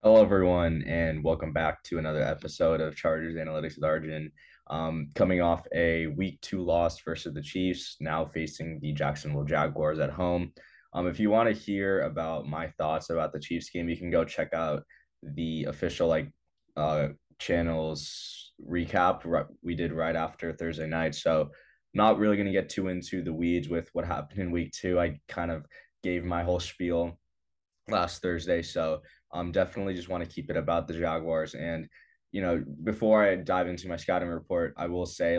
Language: English